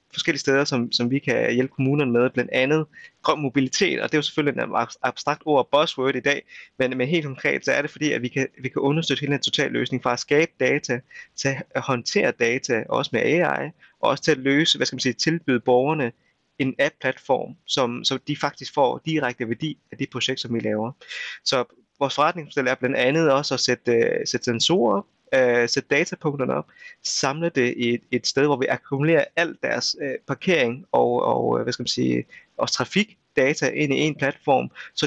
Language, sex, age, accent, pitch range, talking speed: Danish, male, 30-49, native, 125-150 Hz, 205 wpm